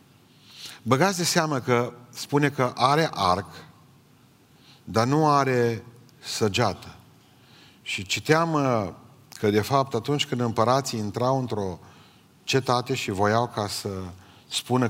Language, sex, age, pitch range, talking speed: Romanian, male, 40-59, 100-130 Hz, 115 wpm